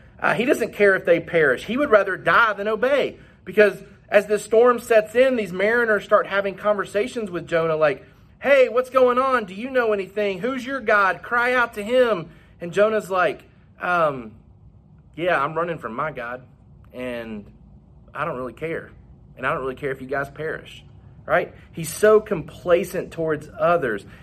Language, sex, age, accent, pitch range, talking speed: English, male, 30-49, American, 155-220 Hz, 180 wpm